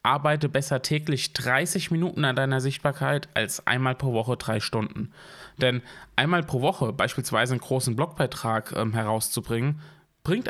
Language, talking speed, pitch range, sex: German, 145 wpm, 120-150 Hz, male